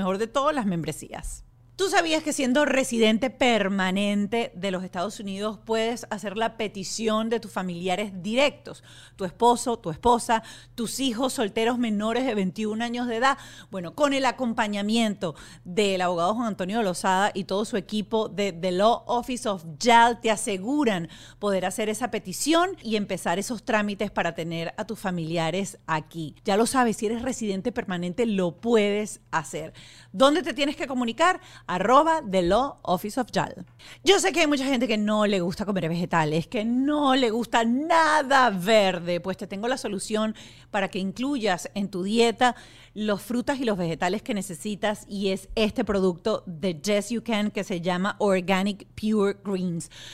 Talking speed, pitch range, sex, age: 170 wpm, 190-245 Hz, female, 40-59